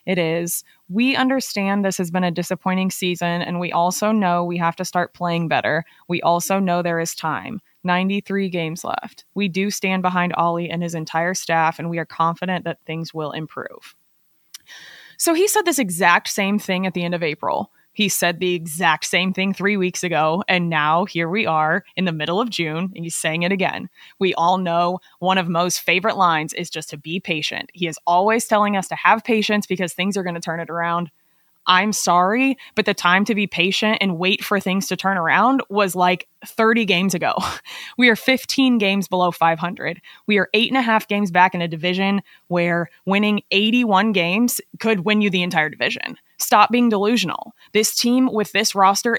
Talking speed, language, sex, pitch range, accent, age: 205 wpm, English, female, 175-210 Hz, American, 20-39